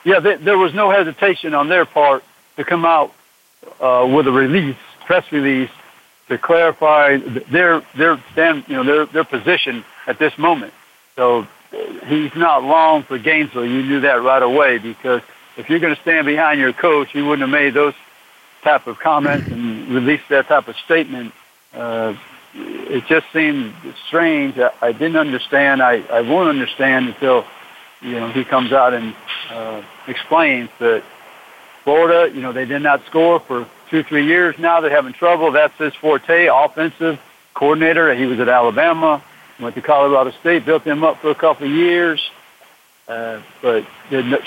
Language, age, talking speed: English, 60-79, 170 wpm